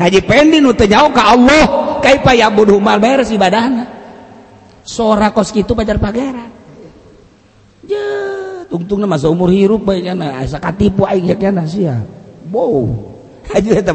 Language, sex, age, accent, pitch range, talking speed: Indonesian, male, 40-59, native, 185-225 Hz, 145 wpm